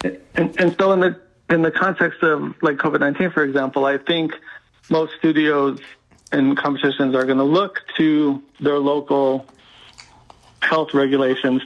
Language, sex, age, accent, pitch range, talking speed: English, male, 40-59, American, 130-150 Hz, 150 wpm